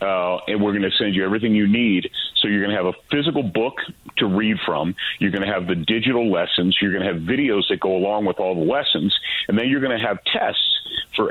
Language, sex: English, male